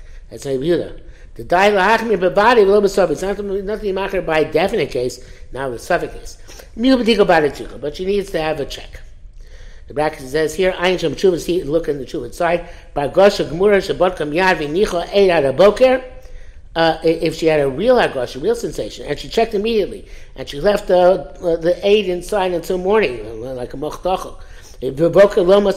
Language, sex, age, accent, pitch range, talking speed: English, male, 60-79, American, 140-185 Hz, 130 wpm